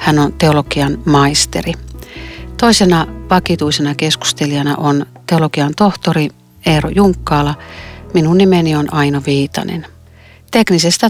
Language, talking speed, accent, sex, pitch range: Finnish, 95 wpm, native, female, 140-175 Hz